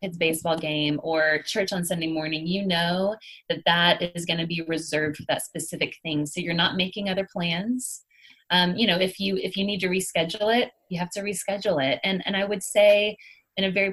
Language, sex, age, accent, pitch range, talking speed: English, female, 20-39, American, 170-210 Hz, 215 wpm